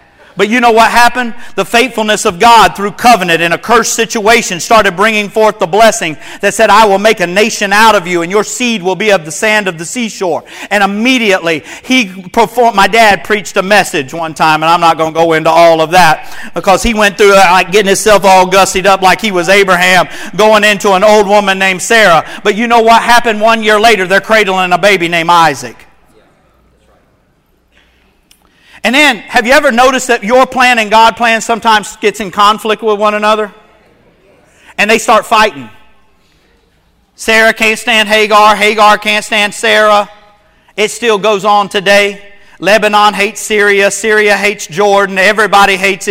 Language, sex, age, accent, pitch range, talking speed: English, male, 50-69, American, 190-220 Hz, 185 wpm